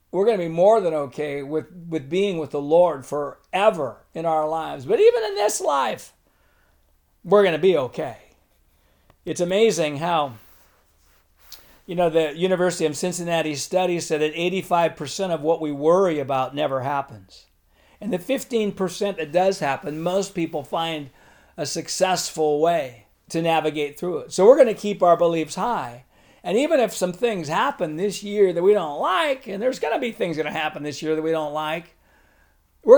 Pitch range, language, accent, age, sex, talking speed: 155-195 Hz, English, American, 50-69, male, 180 wpm